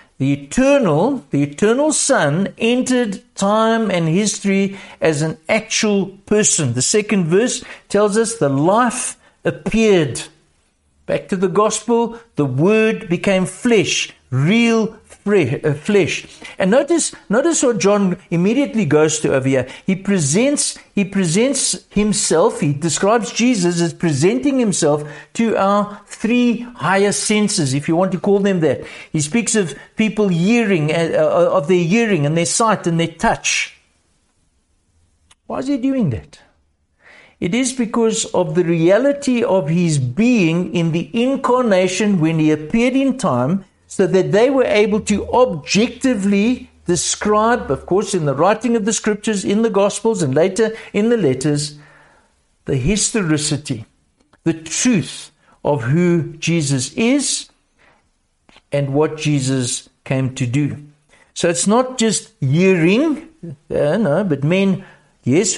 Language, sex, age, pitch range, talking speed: English, male, 60-79, 155-225 Hz, 135 wpm